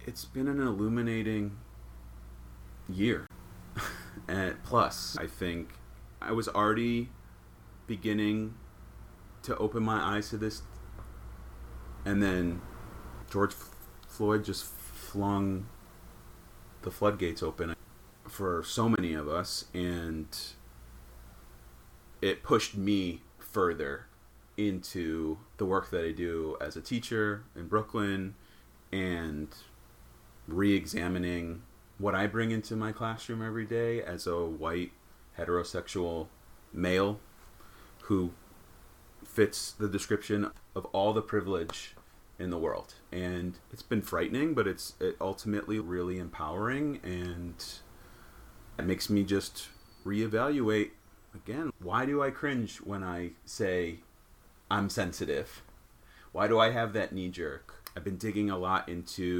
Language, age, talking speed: English, 30-49, 115 wpm